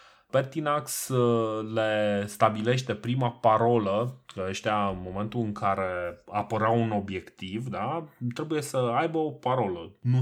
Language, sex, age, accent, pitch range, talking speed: Romanian, male, 20-39, native, 110-135 Hz, 125 wpm